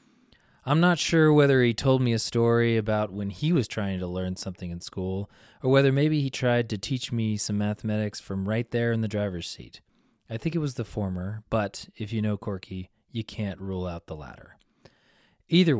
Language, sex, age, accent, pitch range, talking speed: English, male, 30-49, American, 95-130 Hz, 205 wpm